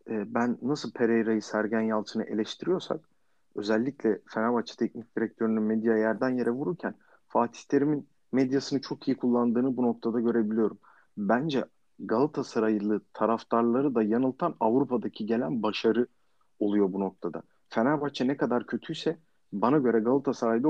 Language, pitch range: Turkish, 110-130 Hz